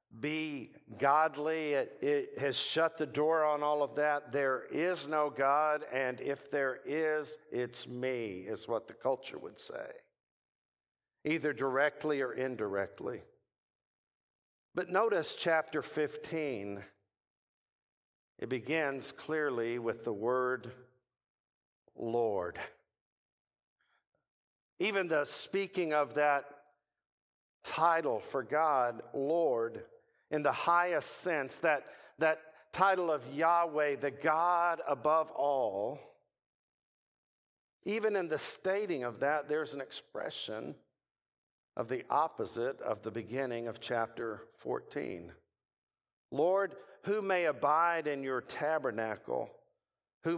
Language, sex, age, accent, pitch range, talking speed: English, male, 60-79, American, 125-160 Hz, 110 wpm